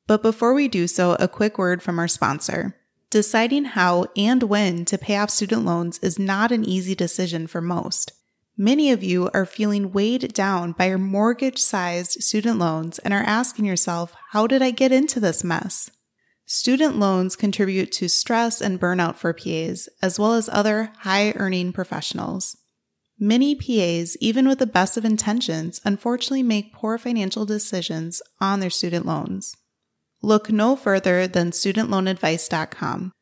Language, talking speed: English, 155 wpm